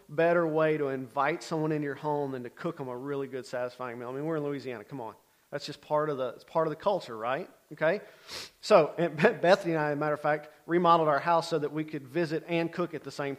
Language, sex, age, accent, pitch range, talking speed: English, male, 40-59, American, 135-160 Hz, 265 wpm